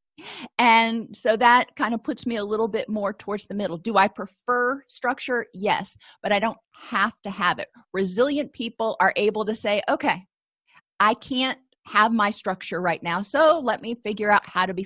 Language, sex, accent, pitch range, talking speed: English, female, American, 195-245 Hz, 195 wpm